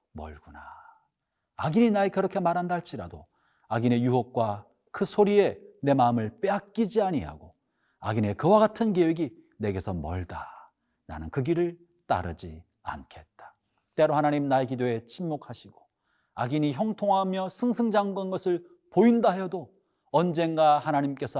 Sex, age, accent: male, 40-59, native